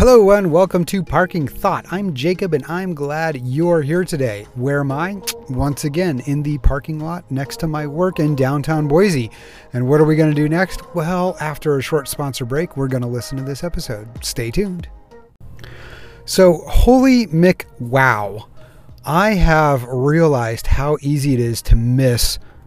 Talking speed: 175 wpm